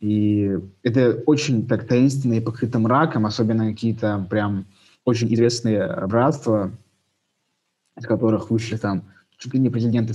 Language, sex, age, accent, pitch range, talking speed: Russian, male, 20-39, native, 105-120 Hz, 120 wpm